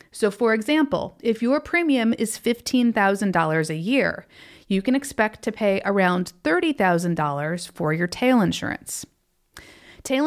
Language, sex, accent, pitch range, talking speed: English, female, American, 185-250 Hz, 130 wpm